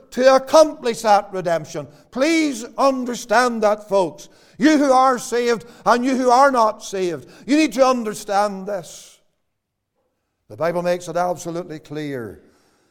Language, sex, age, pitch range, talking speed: English, male, 60-79, 145-225 Hz, 135 wpm